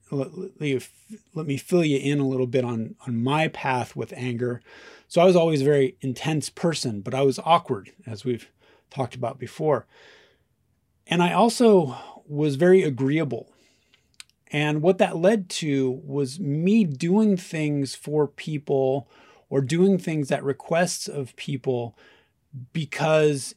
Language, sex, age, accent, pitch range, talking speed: English, male, 30-49, American, 130-160 Hz, 145 wpm